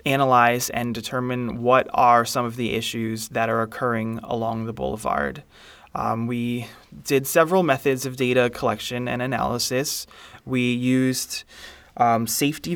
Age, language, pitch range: 20-39, English, 120-135 Hz